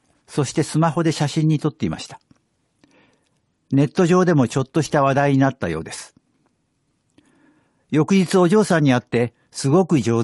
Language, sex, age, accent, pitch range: Japanese, male, 60-79, native, 115-160 Hz